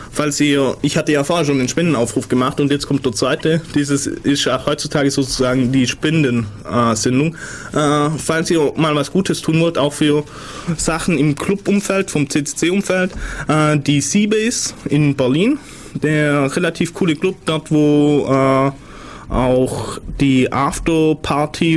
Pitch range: 130-155 Hz